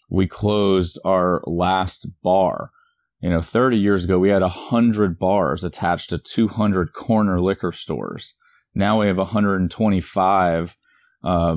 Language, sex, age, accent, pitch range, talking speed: English, male, 30-49, American, 90-105 Hz, 135 wpm